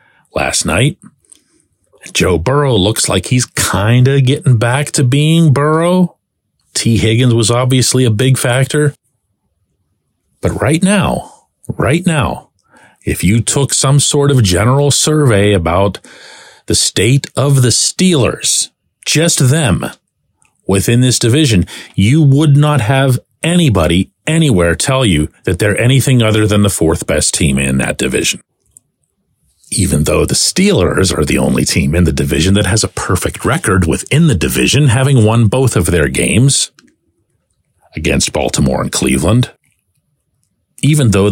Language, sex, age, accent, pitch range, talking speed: English, male, 40-59, American, 100-145 Hz, 140 wpm